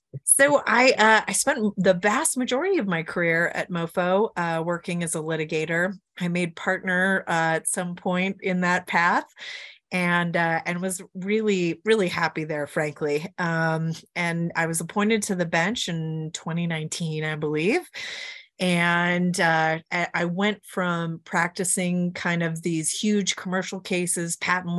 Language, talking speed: English, 150 wpm